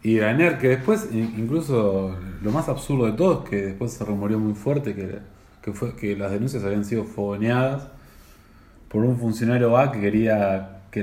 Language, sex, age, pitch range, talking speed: English, male, 20-39, 100-120 Hz, 180 wpm